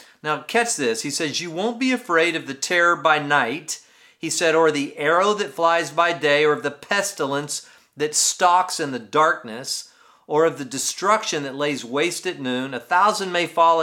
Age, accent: 50-69, American